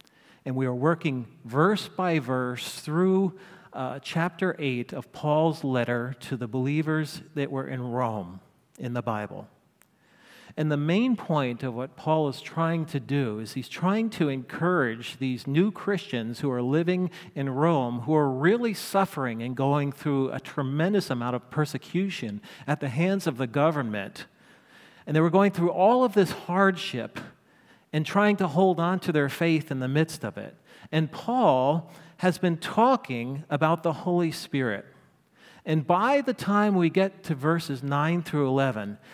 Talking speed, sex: 165 wpm, male